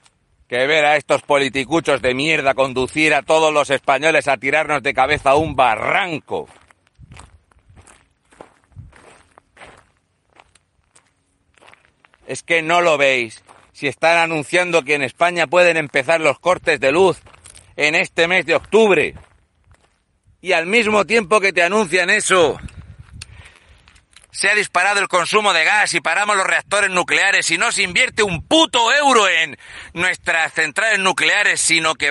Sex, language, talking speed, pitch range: male, Spanish, 140 wpm, 130-185 Hz